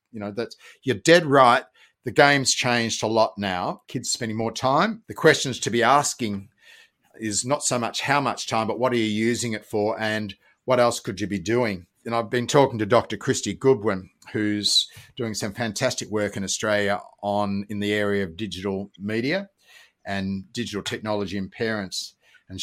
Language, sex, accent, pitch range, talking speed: English, male, Australian, 105-120 Hz, 185 wpm